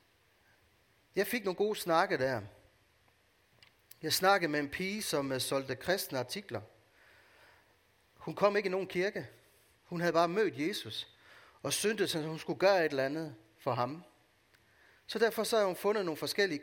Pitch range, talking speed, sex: 110-170 Hz, 160 wpm, male